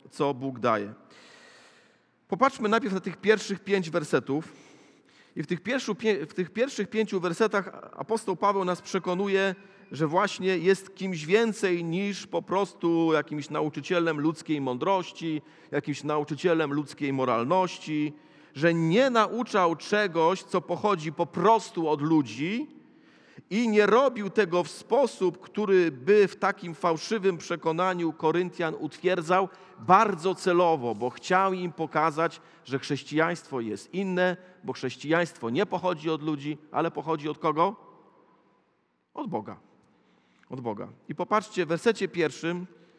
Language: Polish